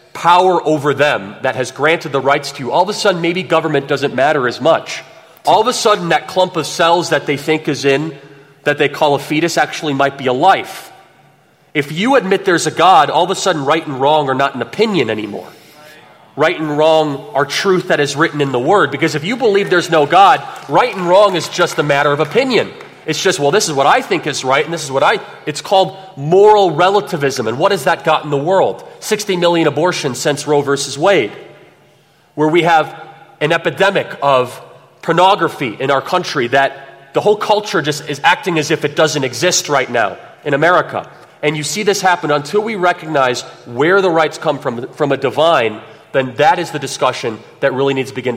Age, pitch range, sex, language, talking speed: 30-49, 140-180 Hz, male, English, 215 wpm